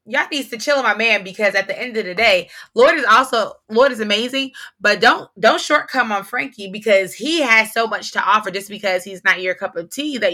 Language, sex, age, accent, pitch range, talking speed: English, female, 20-39, American, 175-230 Hz, 250 wpm